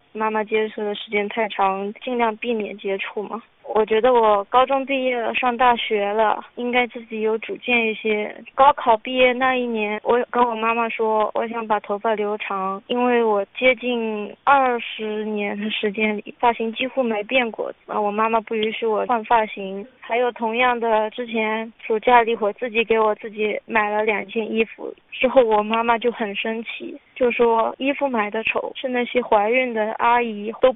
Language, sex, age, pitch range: Chinese, female, 20-39, 215-245 Hz